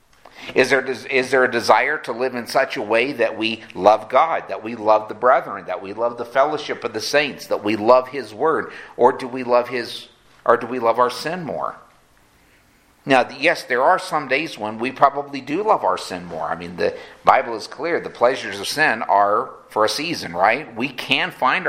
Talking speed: 215 wpm